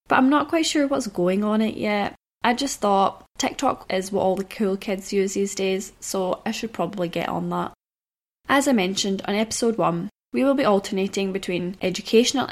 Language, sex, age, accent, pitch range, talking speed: English, female, 10-29, British, 195-230 Hz, 200 wpm